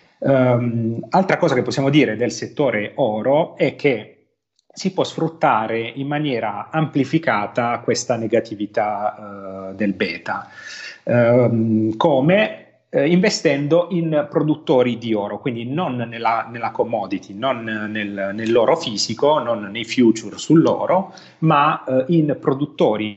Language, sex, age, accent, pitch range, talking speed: Italian, male, 30-49, native, 115-145 Hz, 105 wpm